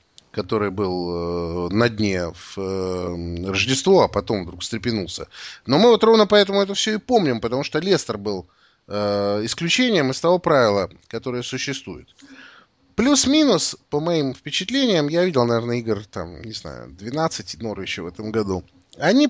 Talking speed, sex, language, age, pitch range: 145 wpm, male, Russian, 30-49, 100-155 Hz